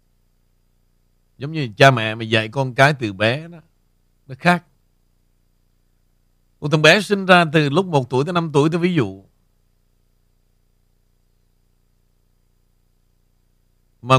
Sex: male